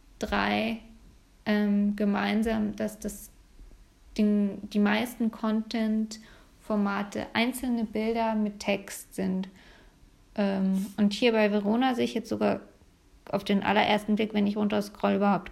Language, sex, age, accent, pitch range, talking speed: German, female, 20-39, German, 195-225 Hz, 125 wpm